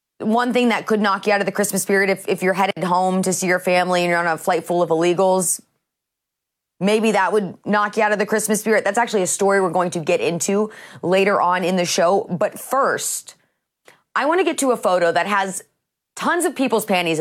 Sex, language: female, English